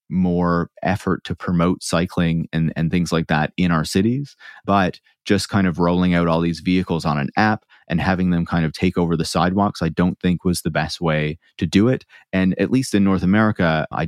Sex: male